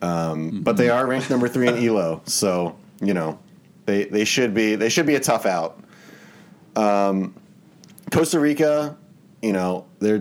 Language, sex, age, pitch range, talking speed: English, male, 30-49, 90-130 Hz, 165 wpm